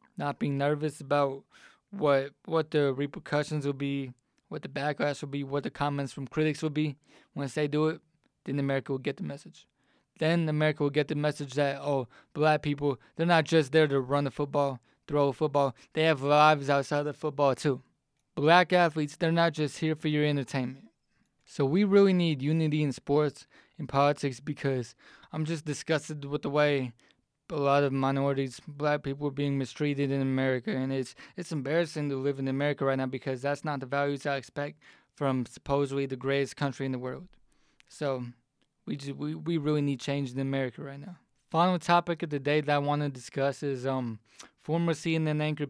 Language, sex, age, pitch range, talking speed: English, male, 20-39, 135-150 Hz, 195 wpm